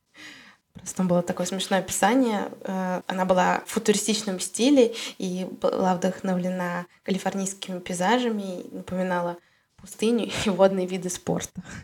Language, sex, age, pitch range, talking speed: Russian, female, 20-39, 185-215 Hz, 105 wpm